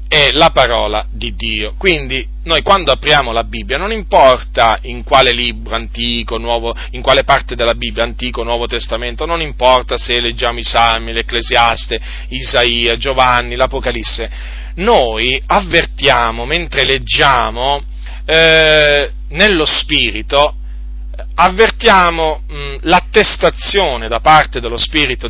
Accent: native